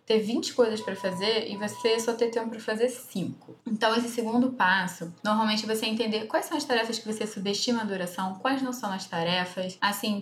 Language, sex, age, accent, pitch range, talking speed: Portuguese, female, 10-29, Brazilian, 200-255 Hz, 205 wpm